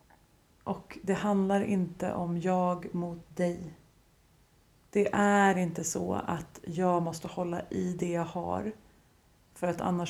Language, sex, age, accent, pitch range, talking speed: Swedish, female, 30-49, native, 175-195 Hz, 135 wpm